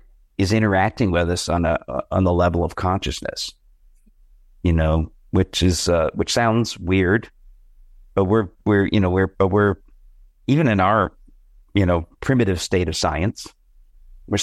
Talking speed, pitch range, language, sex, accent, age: 155 wpm, 80-95 Hz, English, male, American, 50-69